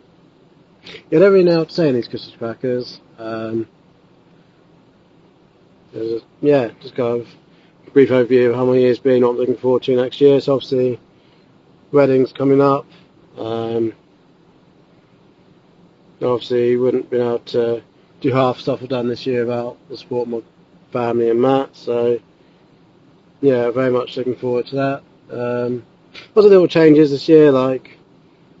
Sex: male